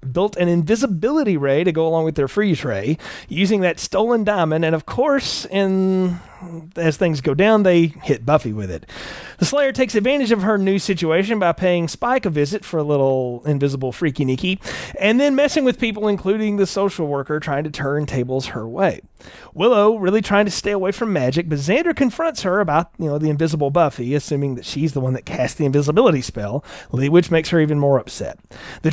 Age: 30-49